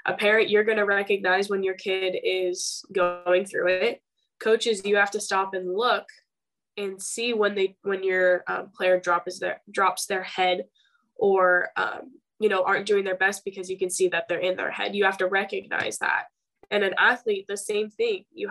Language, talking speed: English, 205 wpm